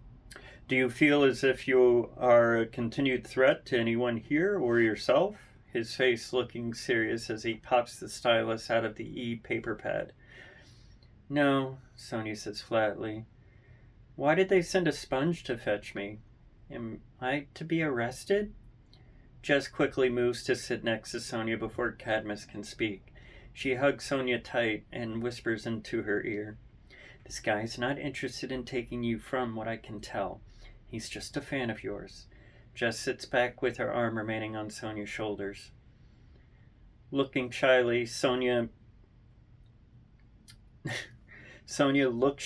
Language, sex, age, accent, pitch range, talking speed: English, male, 40-59, American, 110-130 Hz, 145 wpm